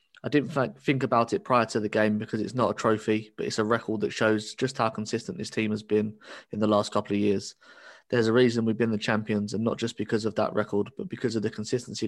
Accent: British